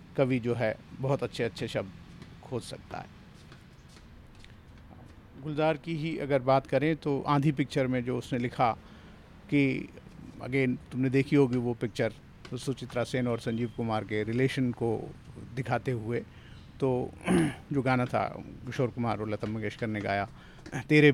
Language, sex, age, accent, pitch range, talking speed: Hindi, male, 50-69, native, 120-140 Hz, 150 wpm